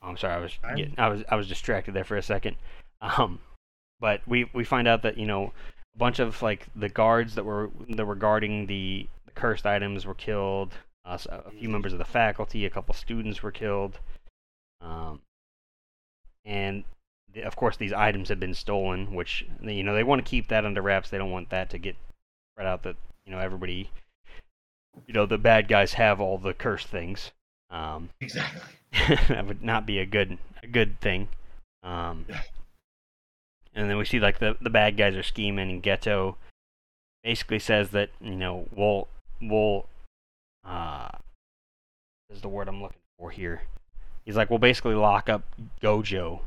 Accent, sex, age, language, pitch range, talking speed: American, male, 20-39, English, 85-105 Hz, 180 wpm